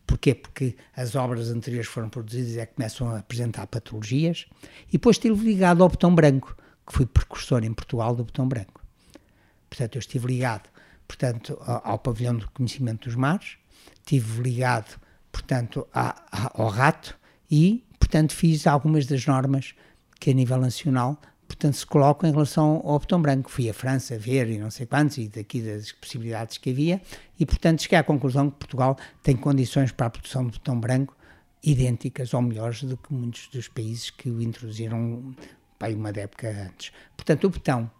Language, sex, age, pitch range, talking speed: Portuguese, male, 60-79, 115-145 Hz, 175 wpm